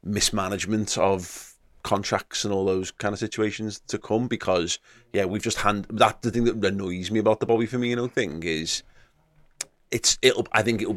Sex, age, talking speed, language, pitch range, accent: male, 30-49, 180 wpm, English, 90-105 Hz, British